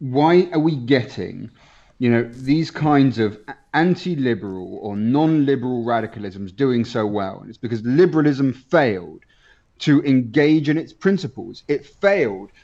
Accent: British